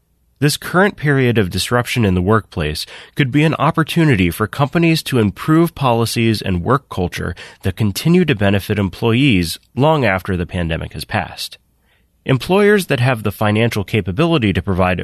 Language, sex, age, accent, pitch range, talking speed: English, male, 30-49, American, 95-140 Hz, 155 wpm